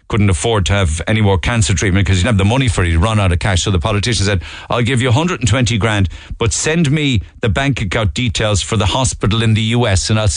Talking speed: 255 wpm